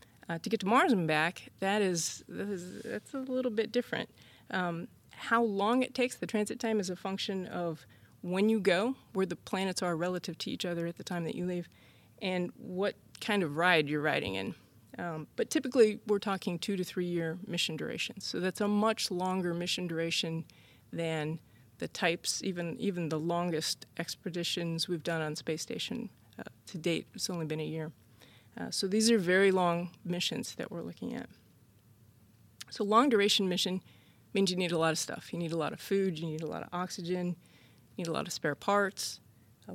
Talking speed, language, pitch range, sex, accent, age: 200 wpm, English, 160-200 Hz, female, American, 30-49